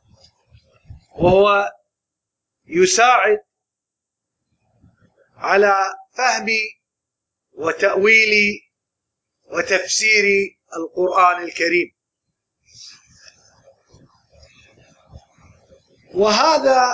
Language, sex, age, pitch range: Arabic, male, 40-59, 200-260 Hz